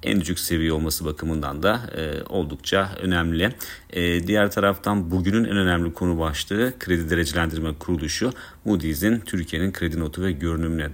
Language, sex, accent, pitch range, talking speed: Turkish, male, native, 80-90 Hz, 145 wpm